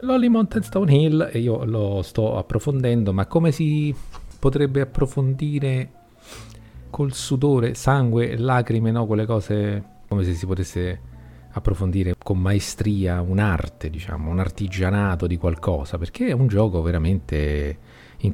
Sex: male